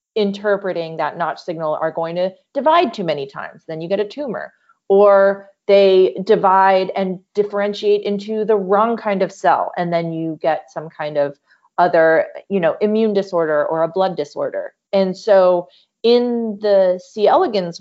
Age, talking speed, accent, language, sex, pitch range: 30-49, 165 wpm, American, English, female, 170-210 Hz